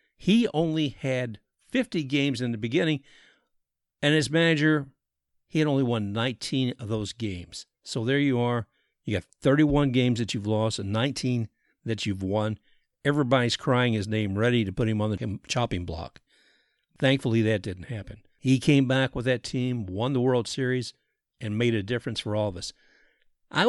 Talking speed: 175 wpm